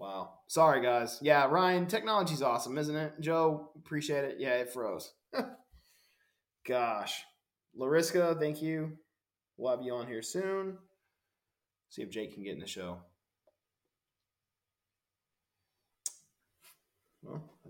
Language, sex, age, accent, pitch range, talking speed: English, male, 20-39, American, 115-155 Hz, 115 wpm